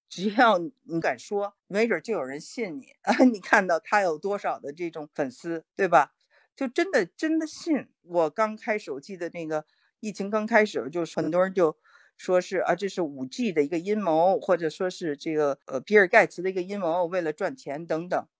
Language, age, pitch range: Chinese, 50-69, 155-205 Hz